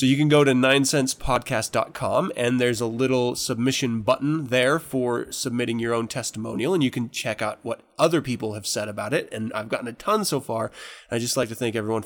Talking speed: 215 wpm